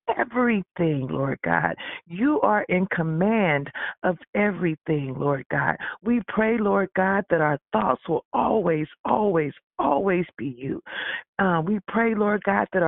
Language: English